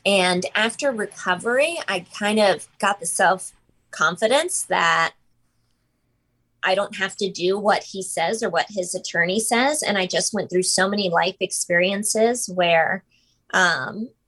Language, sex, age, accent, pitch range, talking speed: English, female, 20-39, American, 180-220 Hz, 145 wpm